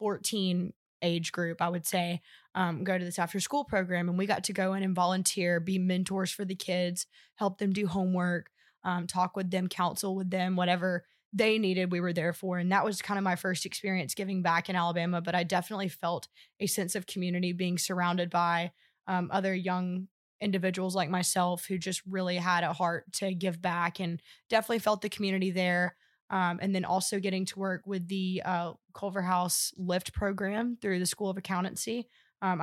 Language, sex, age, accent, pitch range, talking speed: English, female, 20-39, American, 180-195 Hz, 195 wpm